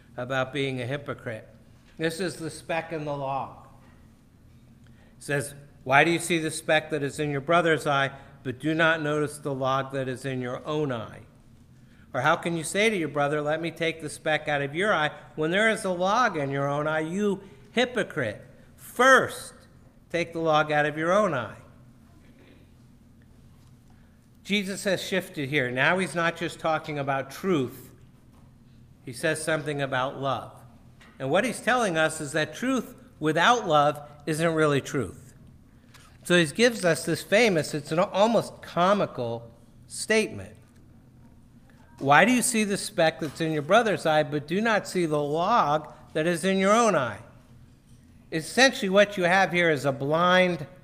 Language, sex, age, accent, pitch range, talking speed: English, male, 60-79, American, 125-165 Hz, 170 wpm